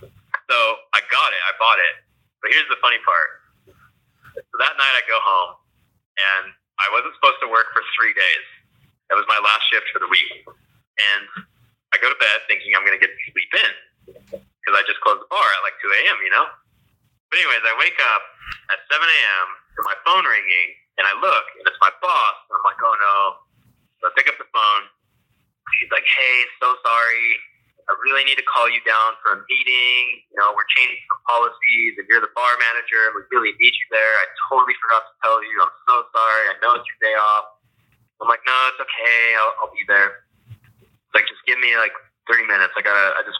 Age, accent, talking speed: 30-49, American, 215 wpm